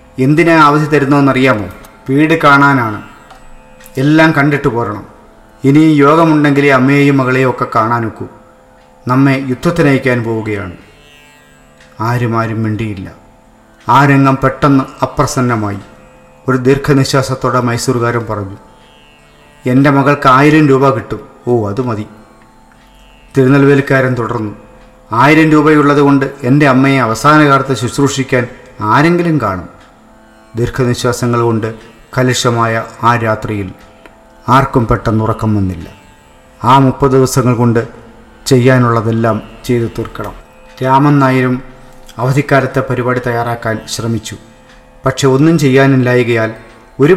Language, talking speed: English, 55 wpm